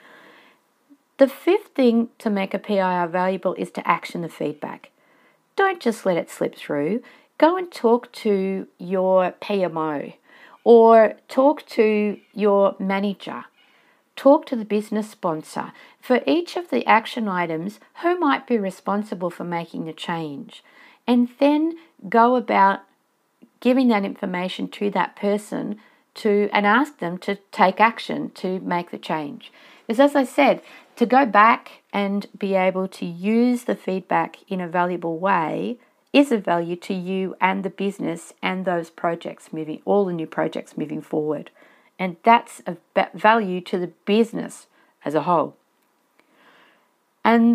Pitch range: 180-235 Hz